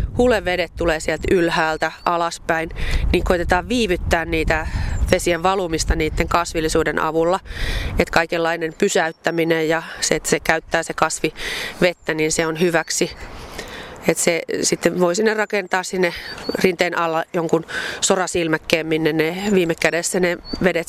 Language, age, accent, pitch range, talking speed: Finnish, 30-49, native, 165-195 Hz, 130 wpm